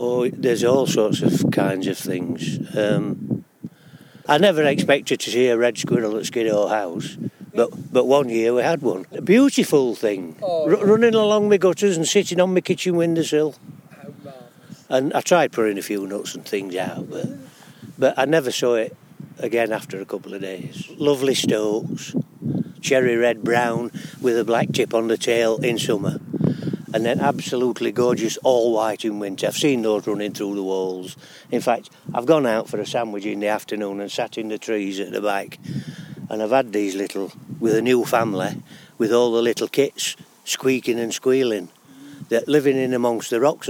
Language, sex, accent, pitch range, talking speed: English, male, British, 105-135 Hz, 185 wpm